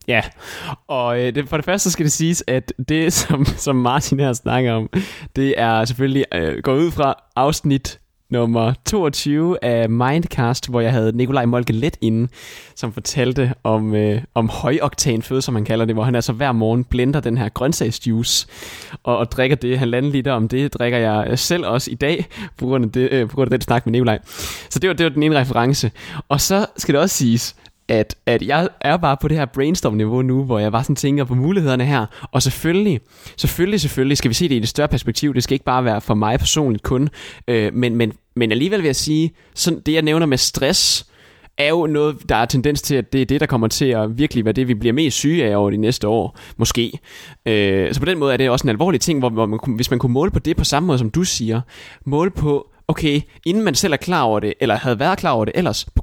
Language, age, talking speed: Danish, 20-39, 235 wpm